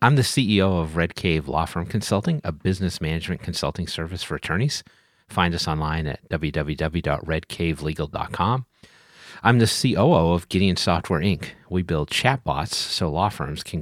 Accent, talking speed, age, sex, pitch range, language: American, 150 wpm, 40-59, male, 80-105 Hz, English